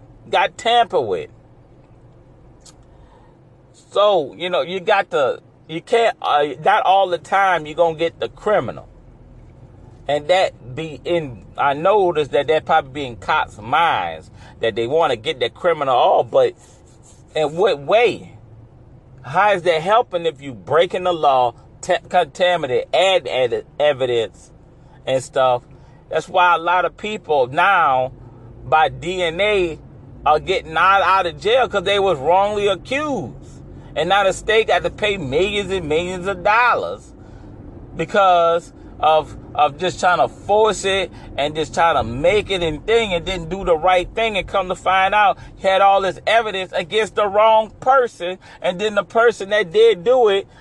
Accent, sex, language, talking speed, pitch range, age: American, male, English, 165 wpm, 140-210 Hz, 40-59